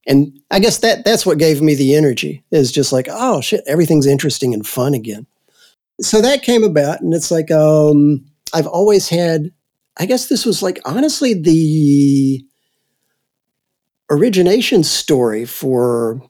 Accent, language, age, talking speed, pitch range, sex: American, English, 50-69, 150 wpm, 125-150 Hz, male